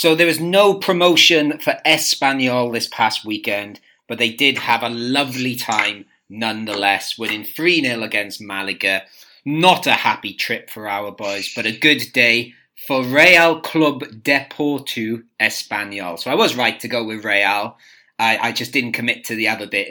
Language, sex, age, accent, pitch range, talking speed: English, male, 30-49, British, 110-140 Hz, 165 wpm